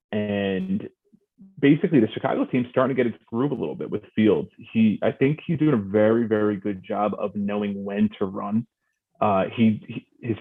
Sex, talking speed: male, 195 wpm